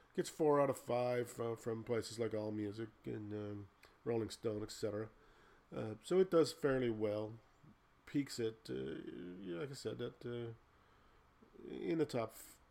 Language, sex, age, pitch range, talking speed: English, male, 40-59, 105-125 Hz, 155 wpm